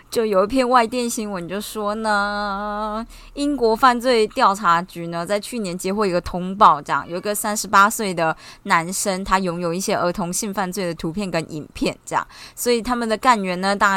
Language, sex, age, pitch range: Chinese, female, 20-39, 205-275 Hz